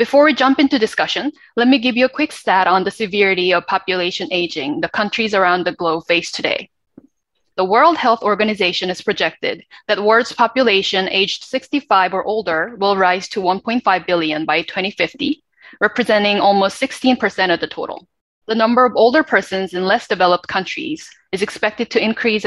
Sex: female